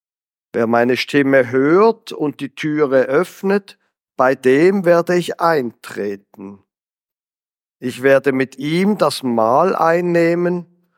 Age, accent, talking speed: 50-69, German, 110 wpm